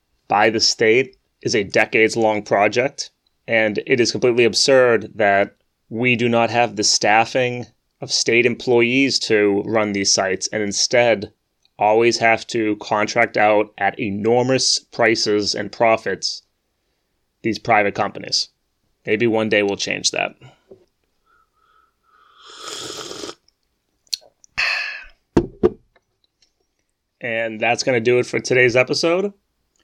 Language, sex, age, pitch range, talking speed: English, male, 20-39, 105-130 Hz, 115 wpm